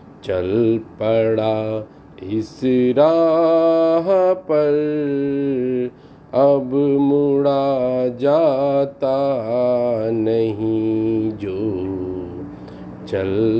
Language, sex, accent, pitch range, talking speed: Hindi, male, native, 110-145 Hz, 50 wpm